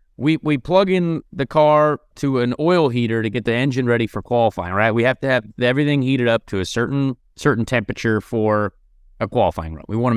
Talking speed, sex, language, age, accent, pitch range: 210 wpm, male, English, 30-49, American, 120-155 Hz